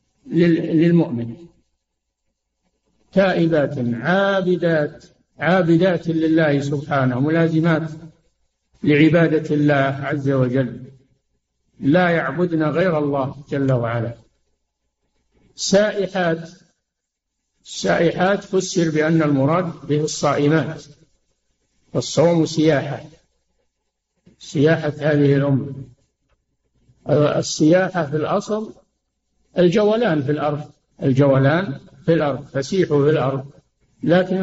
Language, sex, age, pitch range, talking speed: Arabic, male, 60-79, 140-170 Hz, 75 wpm